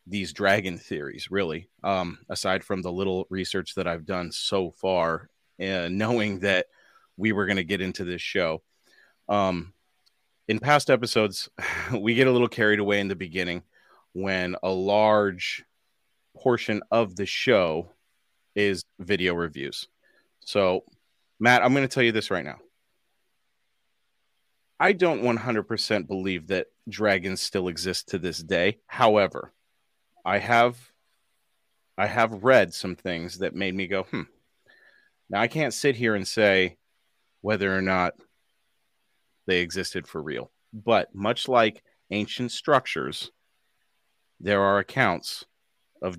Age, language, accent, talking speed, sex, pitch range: 30-49, English, American, 140 wpm, male, 95-110 Hz